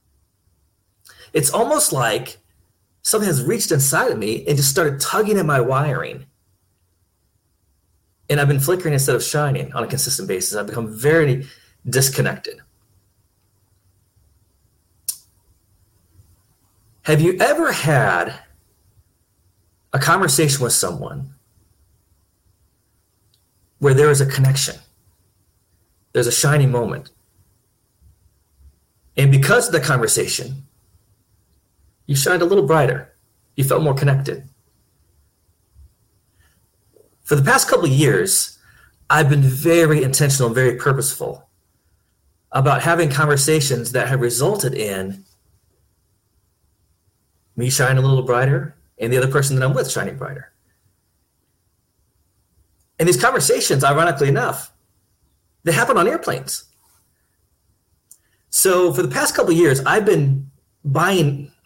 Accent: American